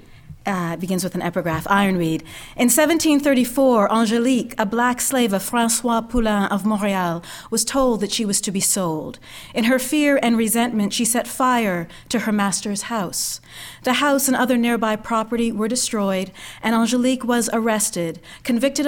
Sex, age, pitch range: female, 40-59, 190-235 Hz